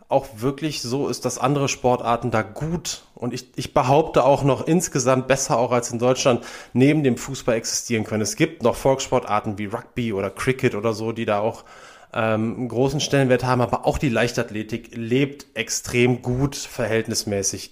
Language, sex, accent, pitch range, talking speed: German, male, German, 110-140 Hz, 175 wpm